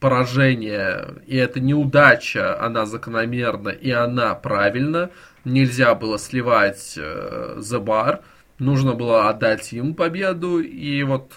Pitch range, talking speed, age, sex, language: 120-150 Hz, 110 wpm, 20-39, male, Russian